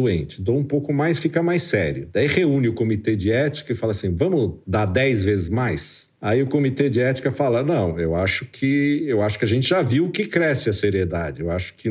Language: Portuguese